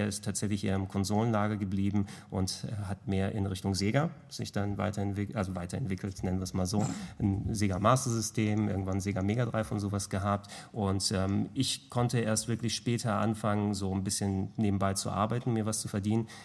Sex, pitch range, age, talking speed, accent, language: male, 95-110 Hz, 30-49, 195 wpm, German, German